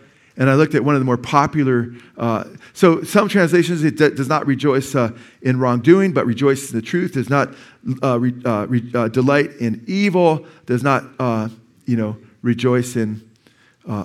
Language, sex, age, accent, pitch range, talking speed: English, male, 50-69, American, 120-160 Hz, 190 wpm